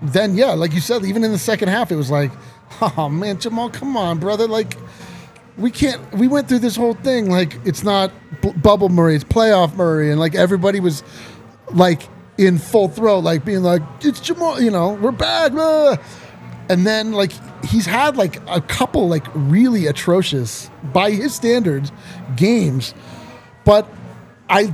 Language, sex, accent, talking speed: English, male, American, 170 wpm